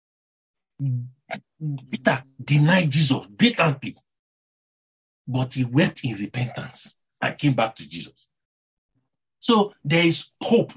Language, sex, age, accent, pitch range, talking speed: English, male, 50-69, Nigerian, 135-210 Hz, 100 wpm